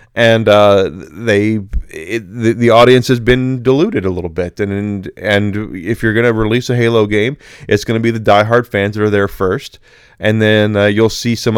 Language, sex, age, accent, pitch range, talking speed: English, male, 30-49, American, 95-115 Hz, 200 wpm